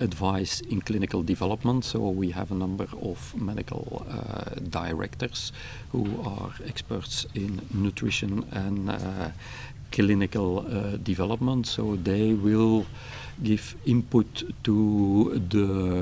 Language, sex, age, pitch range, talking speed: English, male, 50-69, 95-115 Hz, 110 wpm